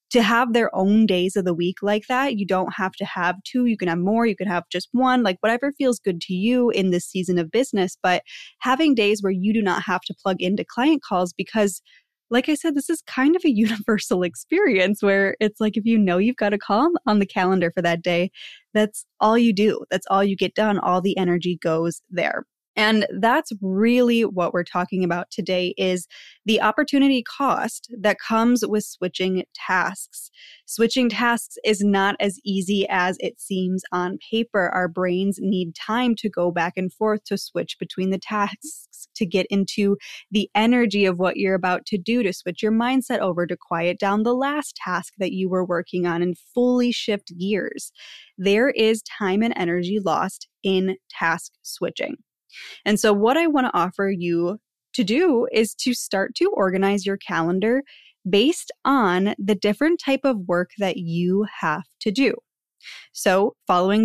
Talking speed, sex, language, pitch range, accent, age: 190 wpm, female, English, 185-230 Hz, American, 10-29